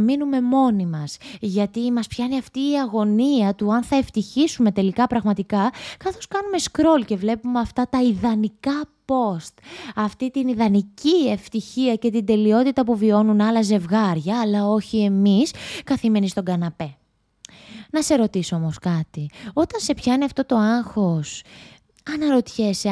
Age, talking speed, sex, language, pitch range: 20-39, 140 wpm, female, Greek, 200-255 Hz